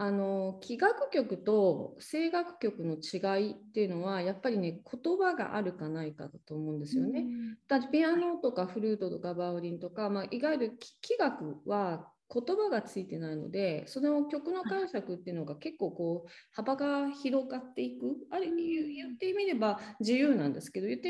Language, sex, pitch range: Japanese, female, 190-300 Hz